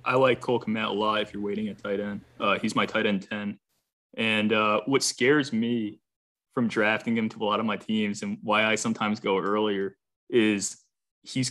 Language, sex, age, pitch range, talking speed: English, male, 20-39, 105-125 Hz, 210 wpm